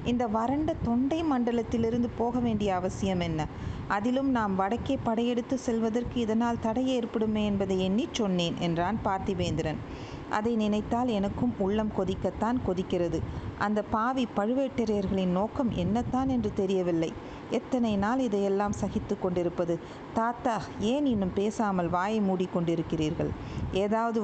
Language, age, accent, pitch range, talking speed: Tamil, 50-69, native, 185-235 Hz, 115 wpm